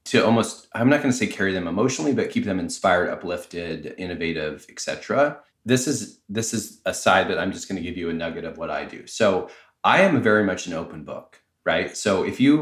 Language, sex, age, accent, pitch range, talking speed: English, male, 30-49, American, 95-115 Hz, 230 wpm